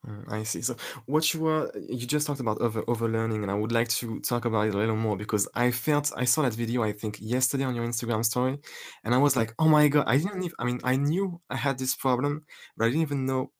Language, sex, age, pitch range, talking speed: English, male, 20-39, 115-140 Hz, 270 wpm